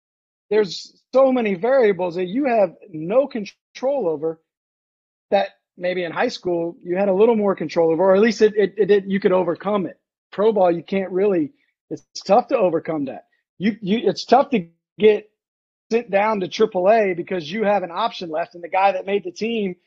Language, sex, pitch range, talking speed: English, male, 175-225 Hz, 200 wpm